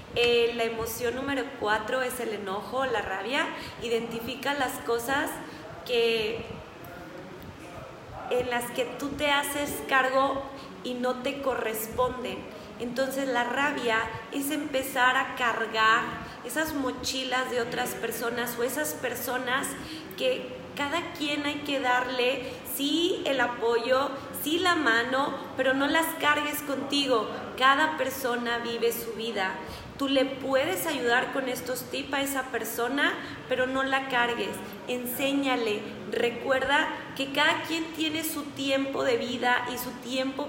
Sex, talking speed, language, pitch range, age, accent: female, 130 wpm, Spanish, 240-285 Hz, 20-39, Mexican